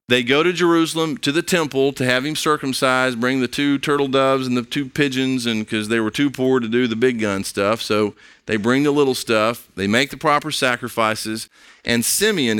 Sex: male